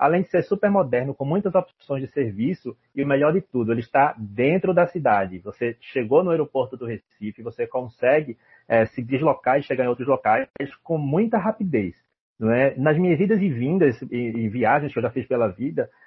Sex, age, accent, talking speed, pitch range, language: male, 30-49, Brazilian, 205 wpm, 115-160 Hz, Portuguese